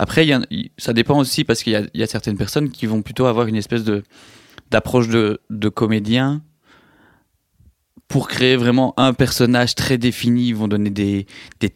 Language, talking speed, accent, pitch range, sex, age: French, 195 wpm, French, 105-120 Hz, male, 20-39